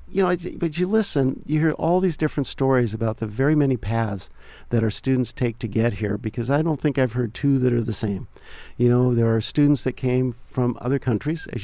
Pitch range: 115-140 Hz